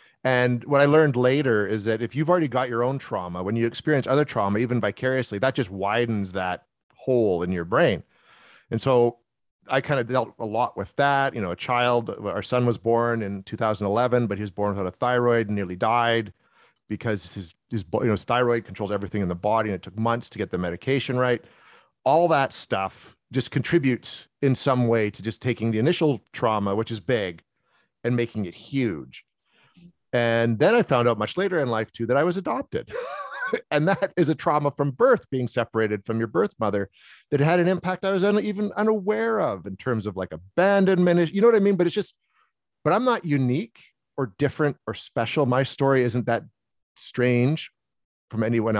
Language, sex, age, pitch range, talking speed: English, male, 40-59, 110-145 Hz, 205 wpm